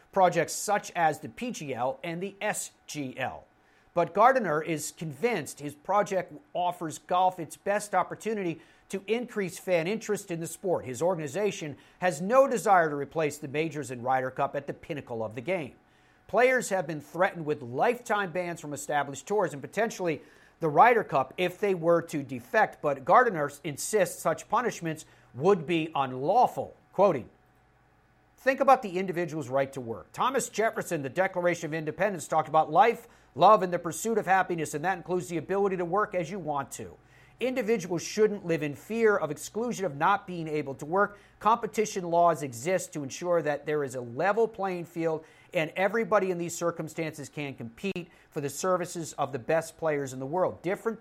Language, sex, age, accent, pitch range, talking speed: English, male, 50-69, American, 150-200 Hz, 175 wpm